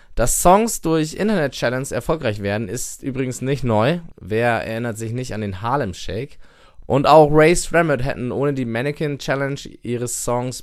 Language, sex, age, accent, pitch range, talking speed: German, male, 20-39, German, 115-155 Hz, 165 wpm